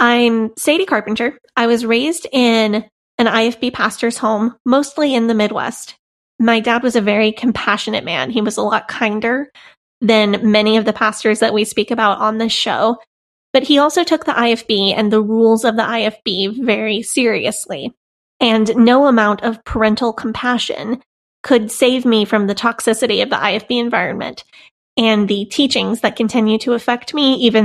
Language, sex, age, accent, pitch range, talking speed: English, female, 20-39, American, 220-250 Hz, 170 wpm